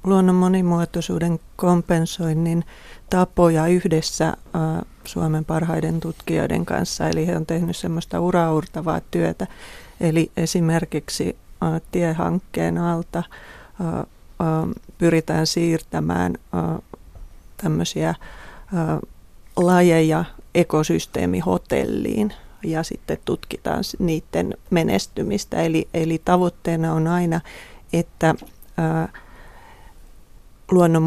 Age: 30-49